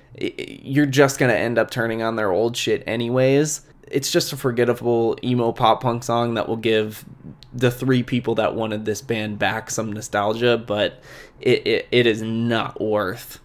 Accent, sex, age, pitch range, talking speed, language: American, male, 20-39, 110-130 Hz, 175 wpm, English